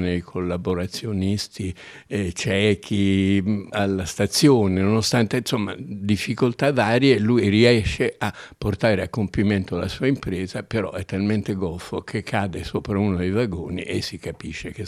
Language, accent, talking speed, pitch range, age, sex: Italian, native, 135 wpm, 90-105 Hz, 60-79, male